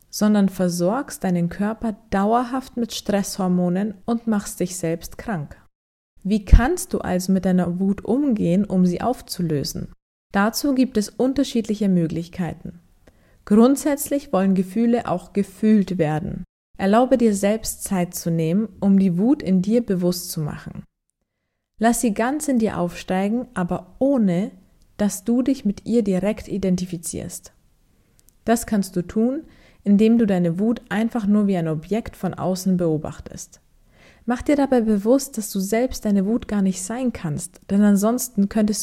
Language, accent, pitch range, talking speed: German, German, 180-230 Hz, 145 wpm